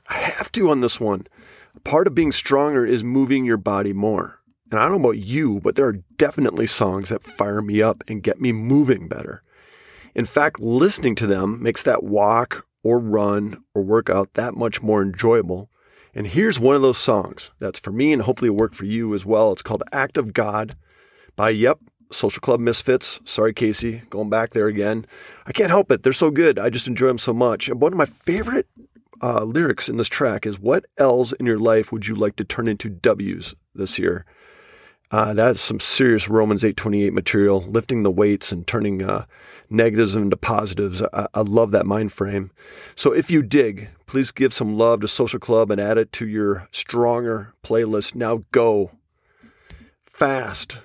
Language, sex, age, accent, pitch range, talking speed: English, male, 40-59, American, 105-125 Hz, 195 wpm